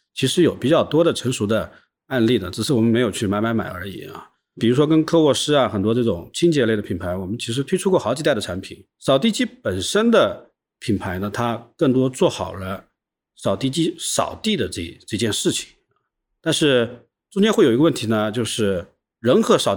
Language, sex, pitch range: Chinese, male, 110-140 Hz